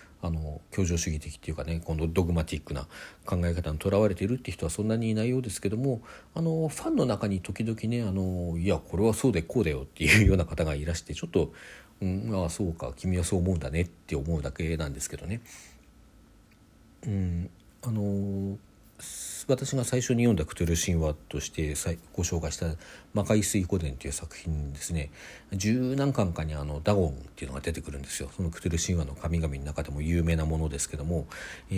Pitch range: 80-100 Hz